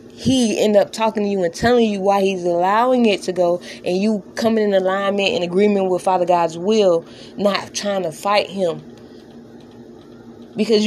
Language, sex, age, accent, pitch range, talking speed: English, female, 20-39, American, 185-225 Hz, 175 wpm